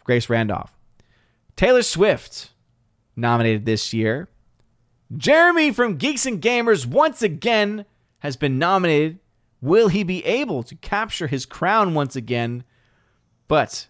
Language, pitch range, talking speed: English, 125-200 Hz, 120 wpm